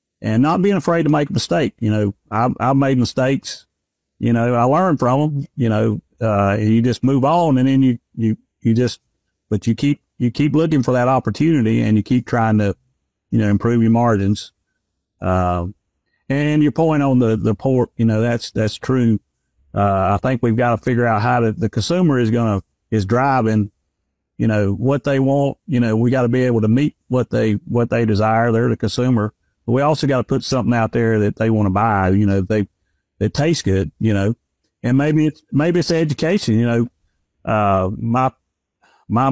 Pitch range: 105-135 Hz